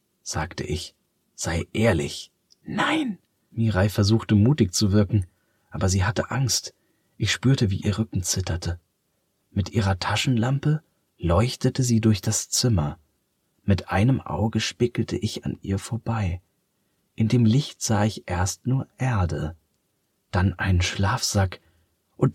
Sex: male